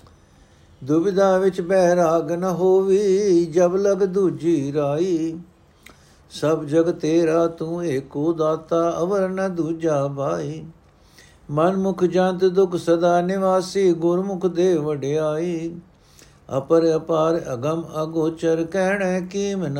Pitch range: 150-185 Hz